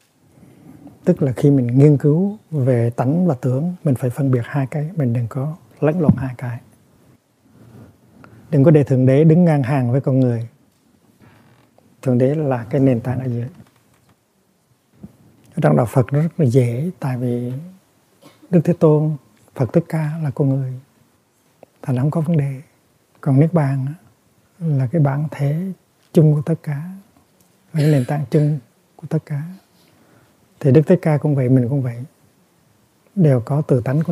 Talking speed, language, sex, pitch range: 170 wpm, Vietnamese, male, 130-155 Hz